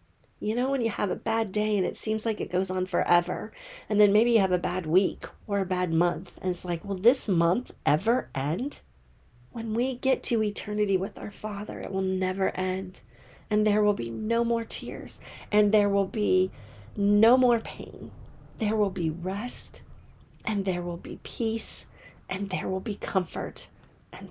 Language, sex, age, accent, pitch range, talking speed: English, female, 40-59, American, 160-215 Hz, 190 wpm